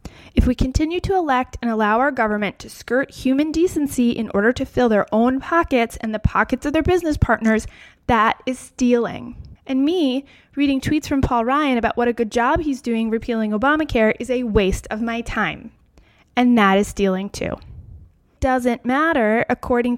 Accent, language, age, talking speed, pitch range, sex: American, English, 20-39, 180 wpm, 220-275 Hz, female